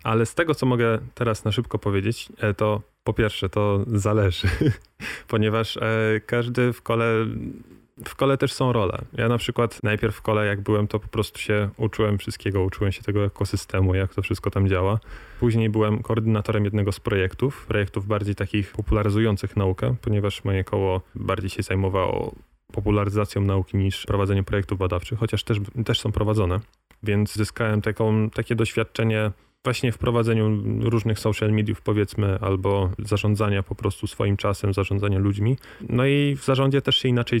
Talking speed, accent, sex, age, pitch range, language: 160 wpm, native, male, 20-39, 100-115 Hz, Polish